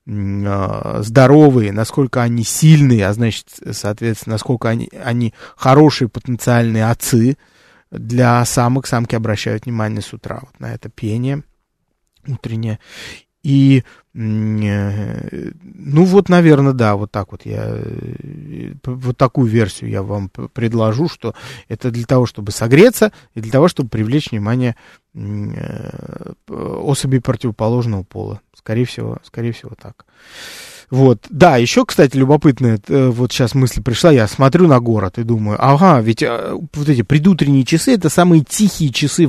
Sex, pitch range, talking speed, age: male, 115-145 Hz, 130 wpm, 20-39